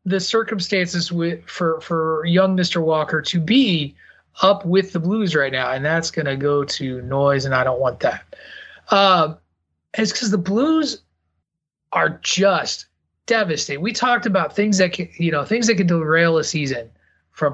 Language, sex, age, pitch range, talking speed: English, male, 30-49, 135-180 Hz, 155 wpm